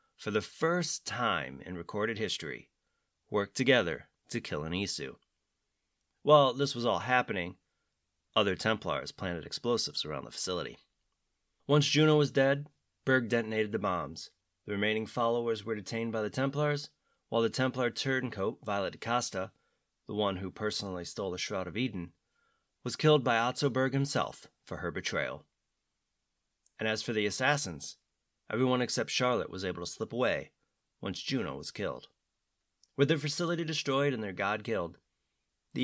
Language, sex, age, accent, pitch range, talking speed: English, male, 30-49, American, 100-135 Hz, 155 wpm